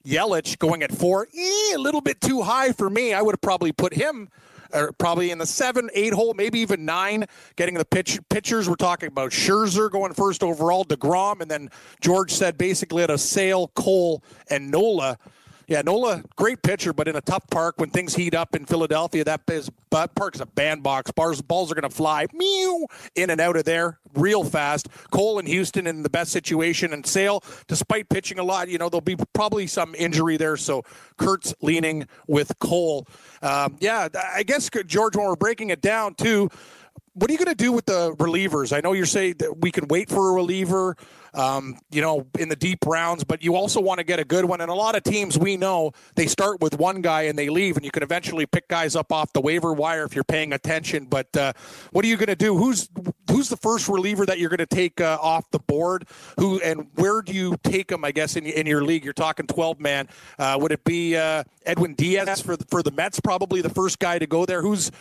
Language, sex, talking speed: English, male, 230 wpm